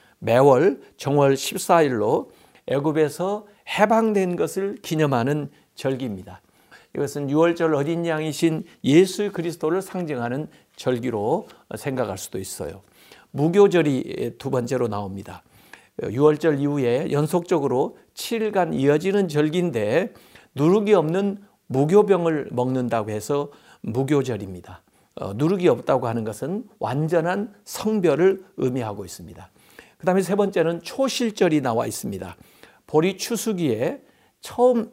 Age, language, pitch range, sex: 60-79, Korean, 130-195 Hz, male